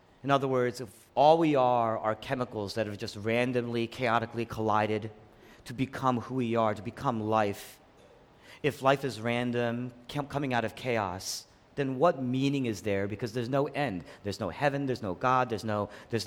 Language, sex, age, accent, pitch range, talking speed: English, male, 40-59, American, 120-180 Hz, 180 wpm